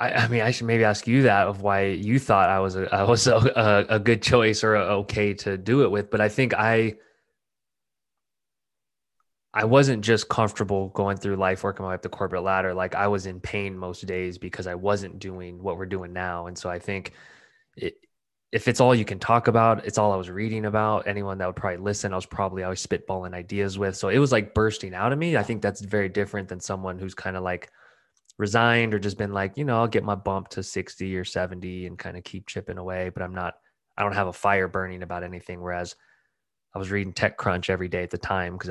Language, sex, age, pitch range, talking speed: English, male, 20-39, 95-110 Hz, 240 wpm